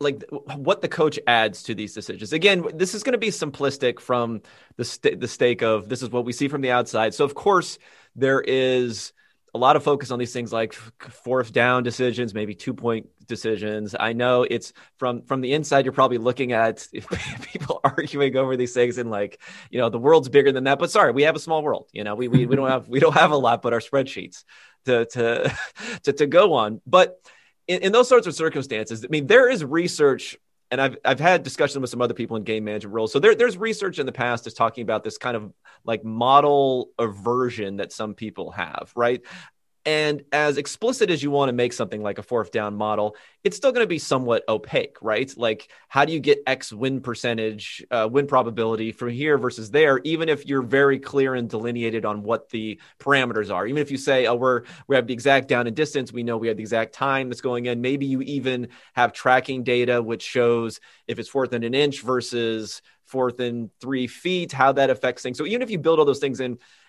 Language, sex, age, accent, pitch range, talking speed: English, male, 30-49, American, 115-140 Hz, 225 wpm